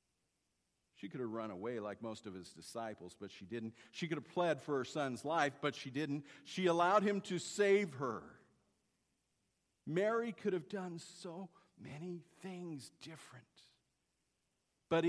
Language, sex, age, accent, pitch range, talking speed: English, male, 50-69, American, 115-160 Hz, 155 wpm